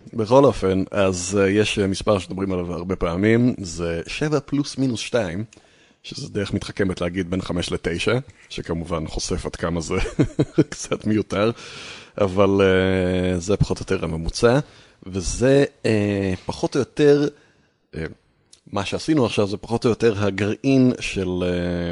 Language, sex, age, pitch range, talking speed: Hebrew, male, 30-49, 90-115 Hz, 140 wpm